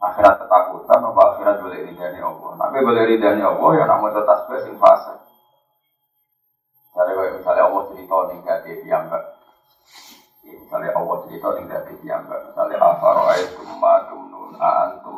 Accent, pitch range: native, 270-335 Hz